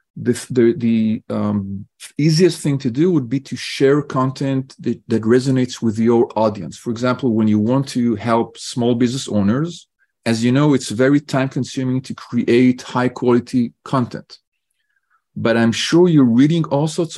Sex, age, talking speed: male, 40-59, 160 wpm